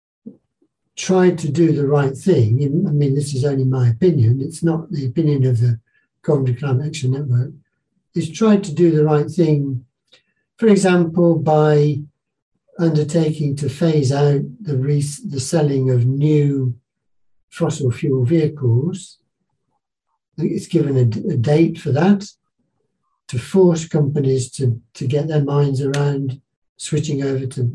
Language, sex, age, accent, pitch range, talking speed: English, male, 60-79, British, 130-165 Hz, 145 wpm